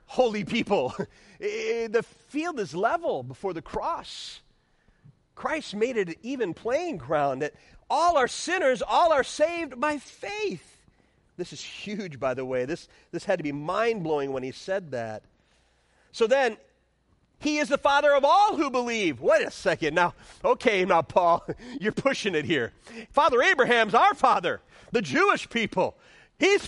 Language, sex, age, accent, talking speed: English, male, 40-59, American, 155 wpm